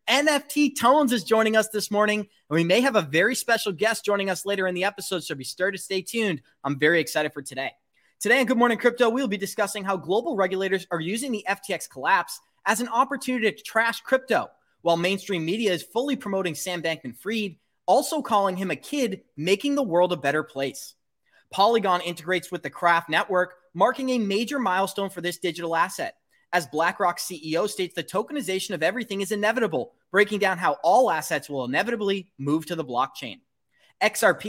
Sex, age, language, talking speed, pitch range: male, 20-39, English, 190 wpm, 175-225 Hz